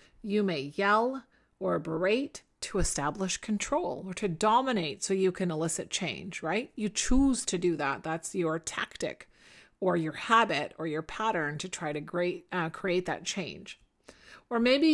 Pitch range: 165-220 Hz